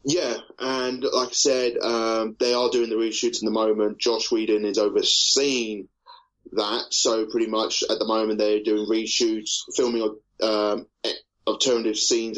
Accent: British